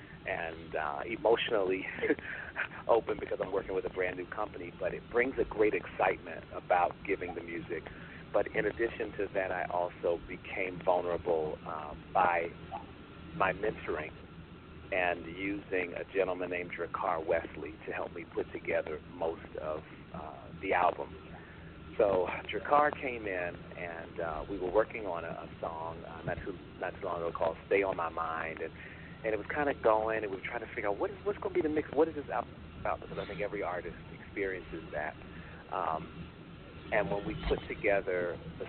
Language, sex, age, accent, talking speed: English, male, 40-59, American, 180 wpm